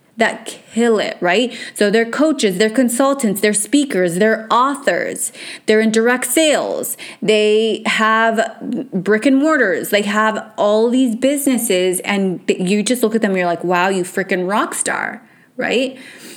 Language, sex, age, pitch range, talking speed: English, female, 30-49, 180-225 Hz, 155 wpm